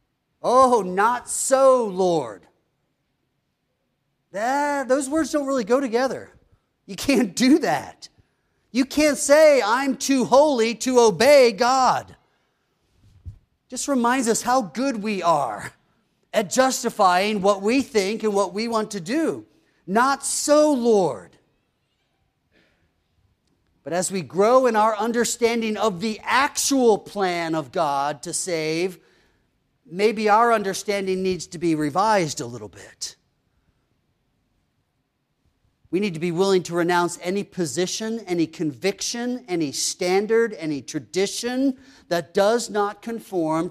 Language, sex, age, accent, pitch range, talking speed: English, male, 40-59, American, 170-245 Hz, 120 wpm